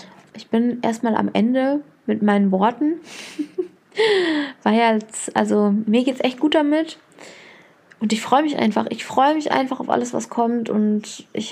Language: German